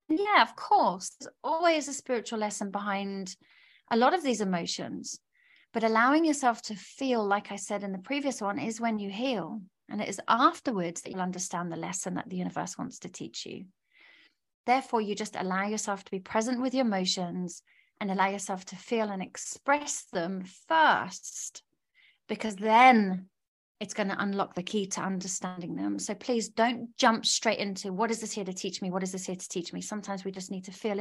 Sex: female